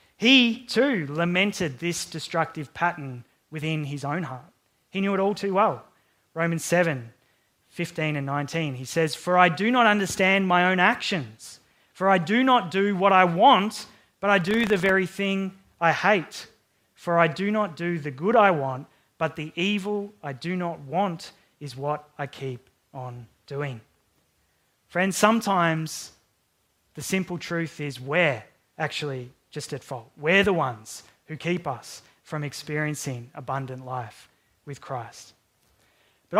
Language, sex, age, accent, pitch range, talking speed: English, male, 20-39, Australian, 140-190 Hz, 155 wpm